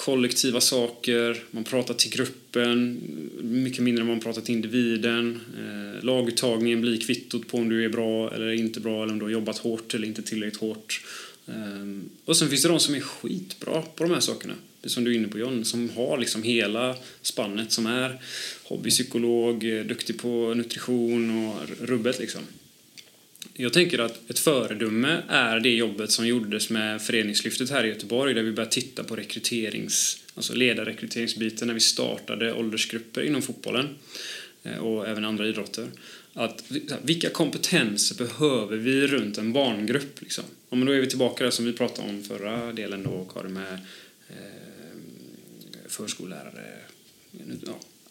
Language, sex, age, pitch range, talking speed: Swedish, male, 20-39, 110-125 Hz, 155 wpm